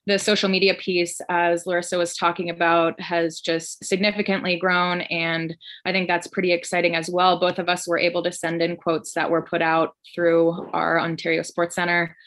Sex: female